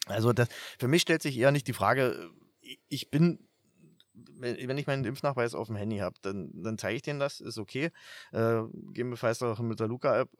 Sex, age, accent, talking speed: male, 30-49, German, 200 wpm